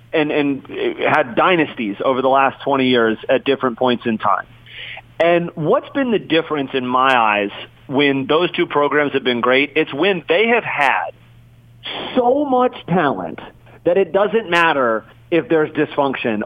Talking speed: 160 wpm